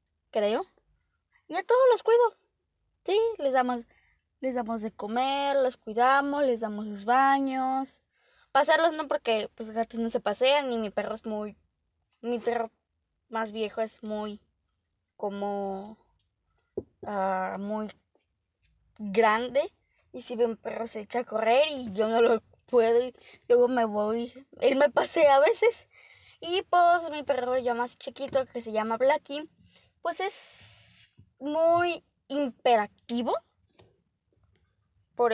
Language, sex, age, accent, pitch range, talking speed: Spanish, female, 10-29, Mexican, 220-320 Hz, 135 wpm